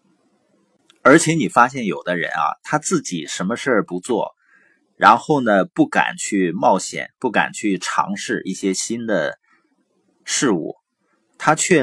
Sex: male